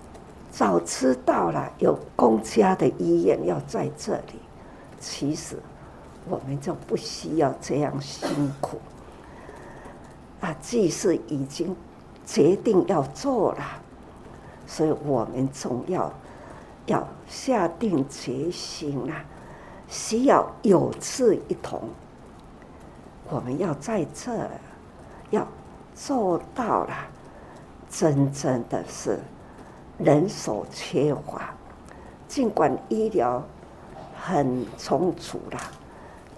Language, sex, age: Chinese, female, 60-79